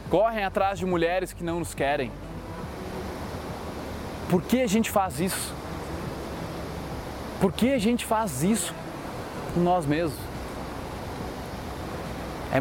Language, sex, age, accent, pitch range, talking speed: Portuguese, male, 20-39, Brazilian, 160-215 Hz, 115 wpm